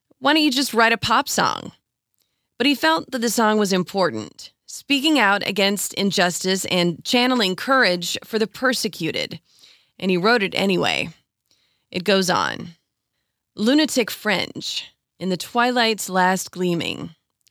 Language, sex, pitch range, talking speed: English, female, 180-235 Hz, 140 wpm